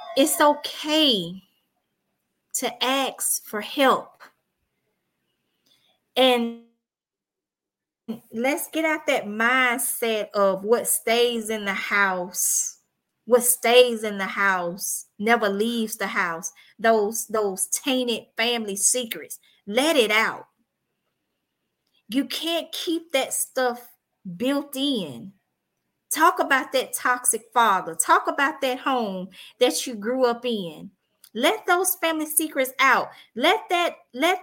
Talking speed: 110 wpm